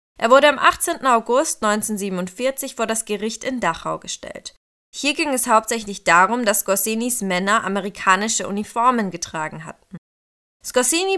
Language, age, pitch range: German, 20-39, 195-250 Hz